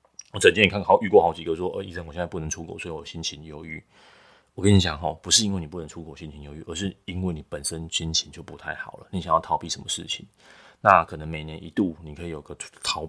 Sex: male